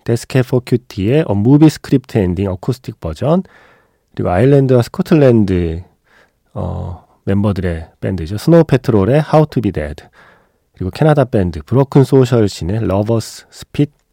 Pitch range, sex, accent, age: 95-135 Hz, male, native, 40-59